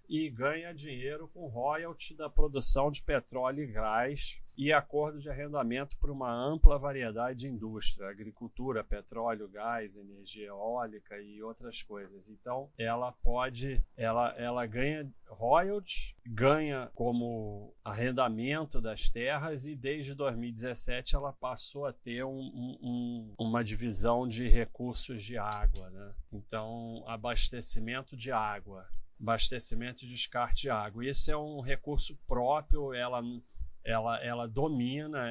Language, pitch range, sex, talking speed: Portuguese, 110-140 Hz, male, 125 wpm